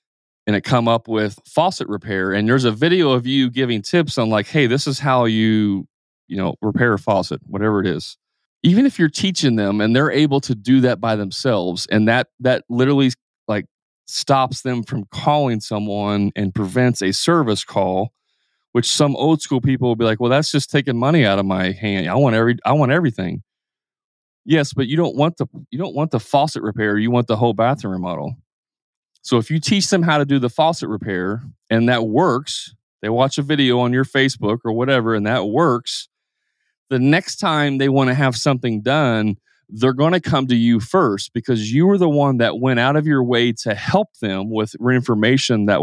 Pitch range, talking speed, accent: 110-140 Hz, 205 wpm, American